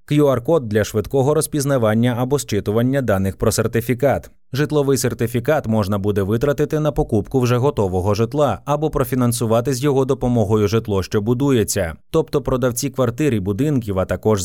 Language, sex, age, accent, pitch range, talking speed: Ukrainian, male, 20-39, native, 110-145 Hz, 140 wpm